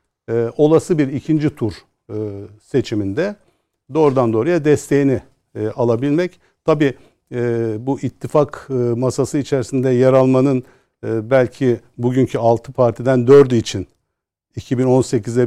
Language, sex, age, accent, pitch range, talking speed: Turkish, male, 60-79, native, 110-135 Hz, 90 wpm